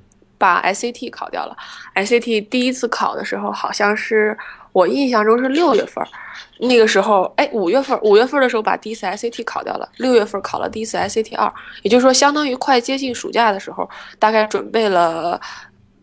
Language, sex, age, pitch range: Chinese, female, 20-39, 205-255 Hz